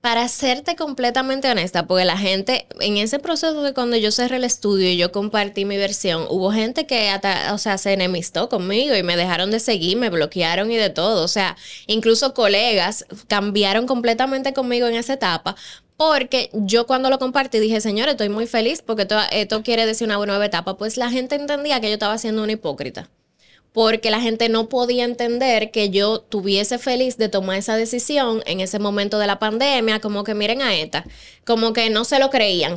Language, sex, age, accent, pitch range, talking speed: Spanish, female, 10-29, American, 205-245 Hz, 200 wpm